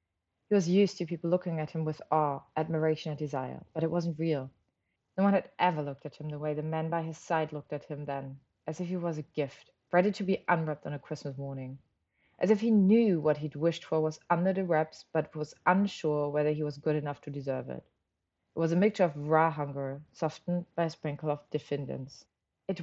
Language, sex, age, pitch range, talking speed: German, female, 30-49, 145-180 Hz, 225 wpm